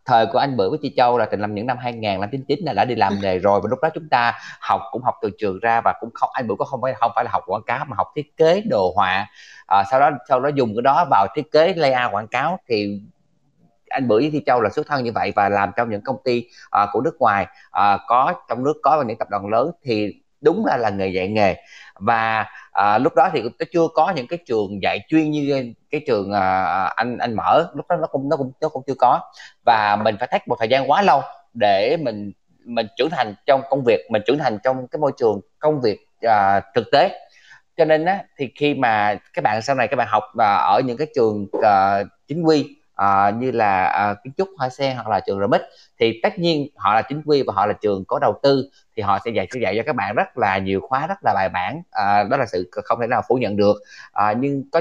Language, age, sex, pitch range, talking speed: Vietnamese, 20-39, male, 105-155 Hz, 260 wpm